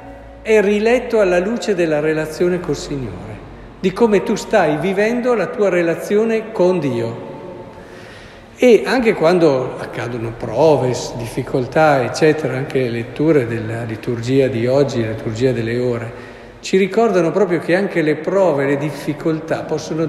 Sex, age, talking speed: male, 50-69, 140 wpm